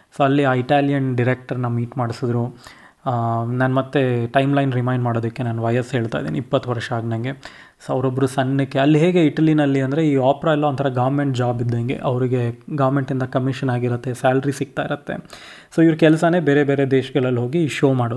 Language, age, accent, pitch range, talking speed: Kannada, 20-39, native, 125-150 Hz, 130 wpm